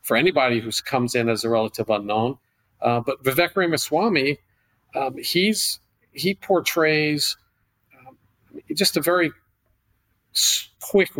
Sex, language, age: male, English, 50-69